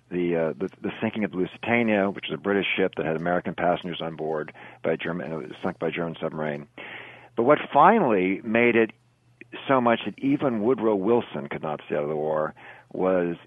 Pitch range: 85-115 Hz